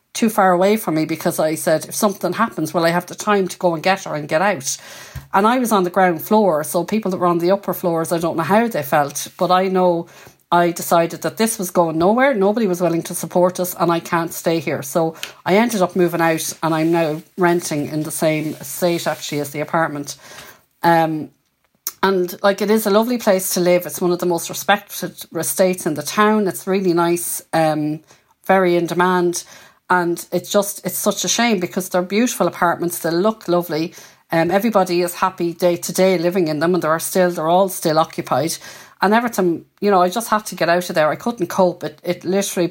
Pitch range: 165-190 Hz